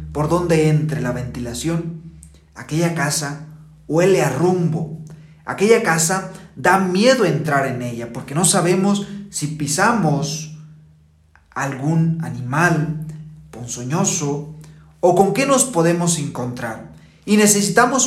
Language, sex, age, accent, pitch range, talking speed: Spanish, male, 40-59, Mexican, 130-175 Hz, 110 wpm